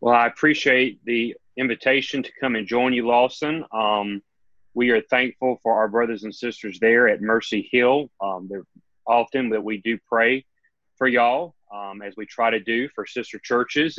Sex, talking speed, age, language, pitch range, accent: male, 170 wpm, 30-49, English, 110-130 Hz, American